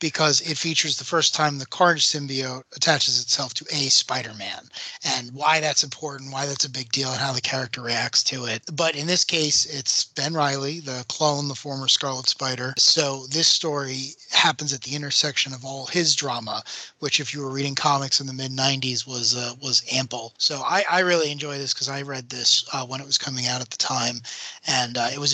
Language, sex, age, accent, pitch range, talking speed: English, male, 30-49, American, 130-150 Hz, 215 wpm